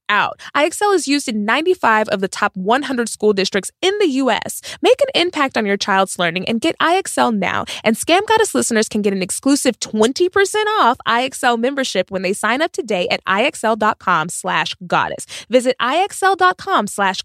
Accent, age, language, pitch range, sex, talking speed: American, 20-39, English, 215-315 Hz, female, 175 wpm